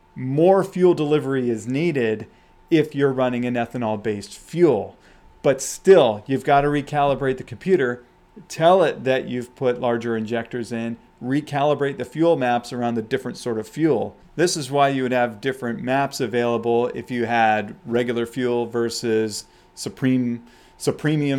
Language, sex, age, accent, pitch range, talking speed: English, male, 40-59, American, 115-140 Hz, 150 wpm